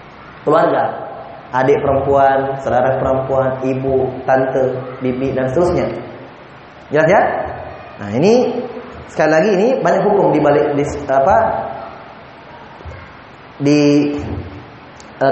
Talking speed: 95 wpm